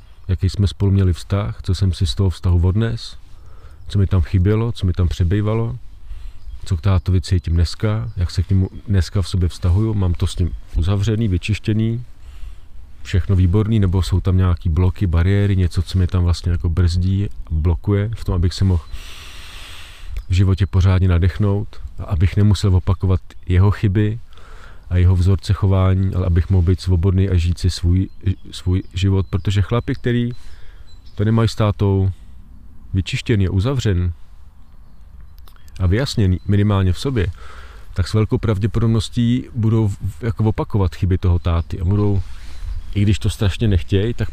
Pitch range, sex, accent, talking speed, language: 85-105 Hz, male, native, 160 wpm, Czech